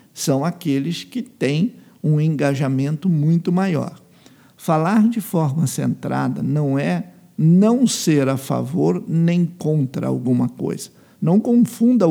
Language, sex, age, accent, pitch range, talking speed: Portuguese, male, 50-69, Brazilian, 140-190 Hz, 120 wpm